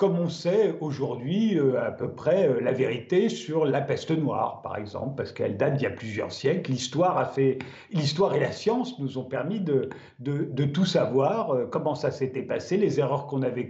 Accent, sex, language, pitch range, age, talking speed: French, male, French, 140-195 Hz, 50-69, 200 wpm